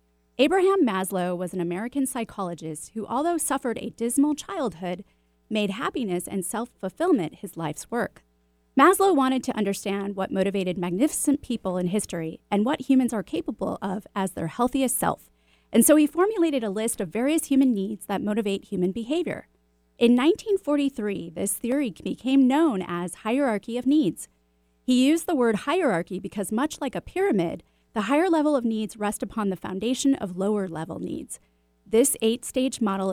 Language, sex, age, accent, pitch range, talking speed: English, female, 30-49, American, 185-270 Hz, 160 wpm